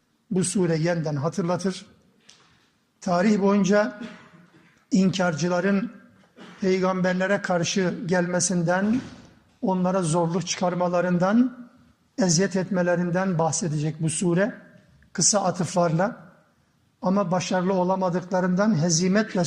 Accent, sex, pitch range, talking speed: native, male, 170-195 Hz, 75 wpm